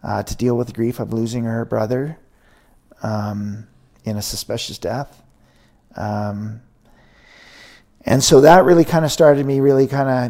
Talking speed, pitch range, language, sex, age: 155 wpm, 115-140 Hz, English, male, 50-69